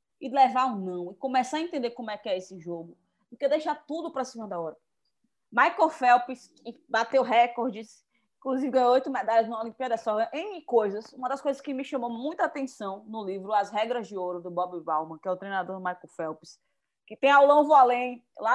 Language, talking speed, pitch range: Portuguese, 205 wpm, 205-285 Hz